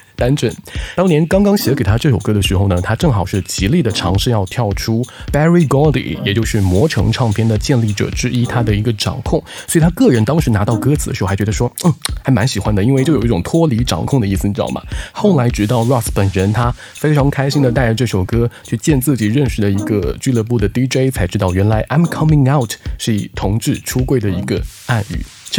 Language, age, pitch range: Chinese, 20-39, 105-140 Hz